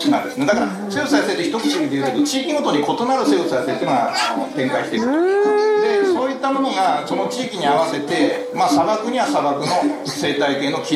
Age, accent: 60-79, native